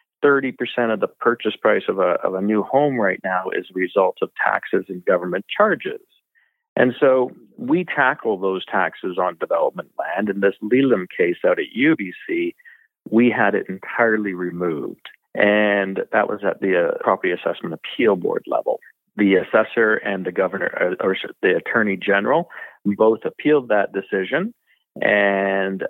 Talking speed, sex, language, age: 160 wpm, male, English, 40-59